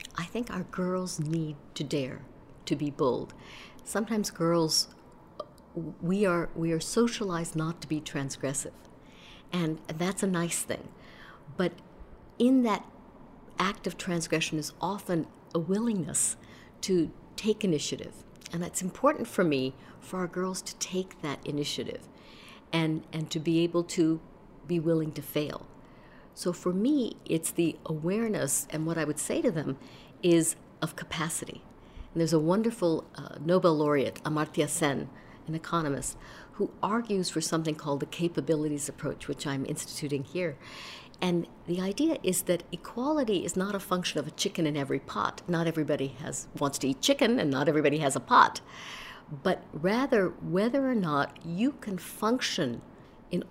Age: 60-79